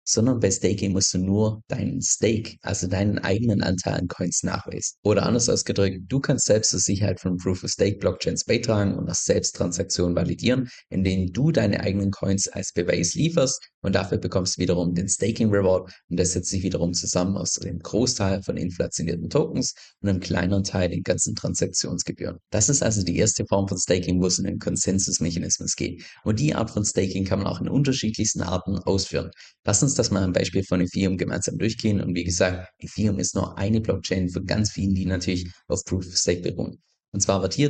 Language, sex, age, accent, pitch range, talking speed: German, male, 20-39, German, 90-110 Hz, 200 wpm